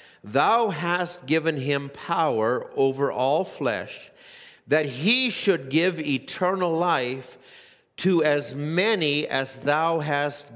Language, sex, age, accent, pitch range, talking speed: English, male, 50-69, American, 150-195 Hz, 115 wpm